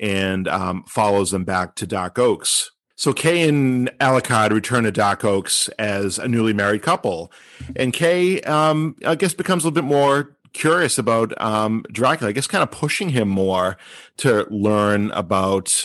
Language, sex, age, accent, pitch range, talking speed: English, male, 40-59, American, 95-115 Hz, 170 wpm